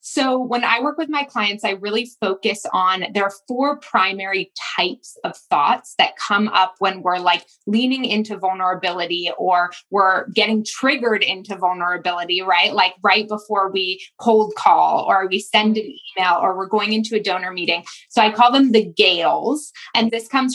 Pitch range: 185-230 Hz